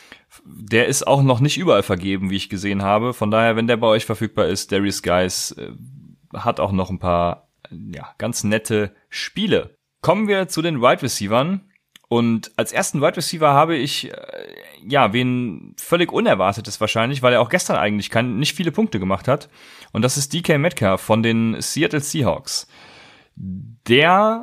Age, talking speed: 30-49, 180 wpm